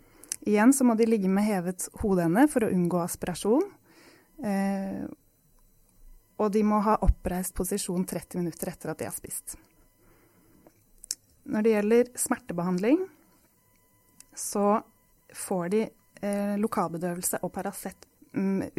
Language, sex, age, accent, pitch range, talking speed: English, female, 20-39, Swedish, 180-220 Hz, 110 wpm